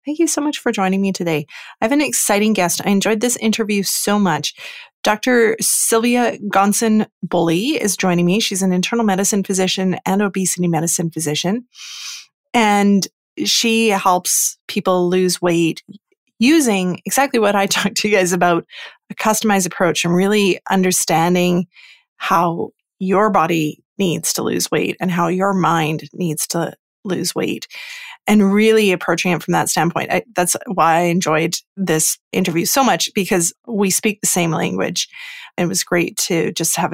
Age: 30-49